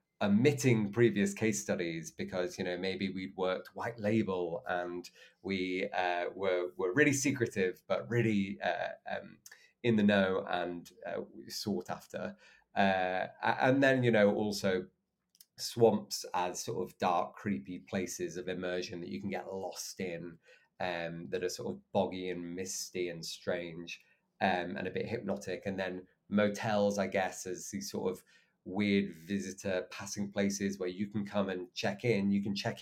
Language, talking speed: English, 165 wpm